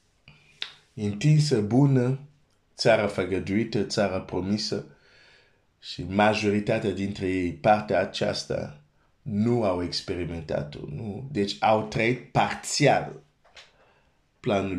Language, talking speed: Romanian, 85 wpm